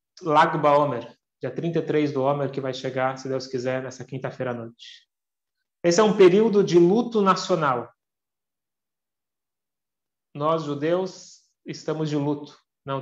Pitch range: 140-180 Hz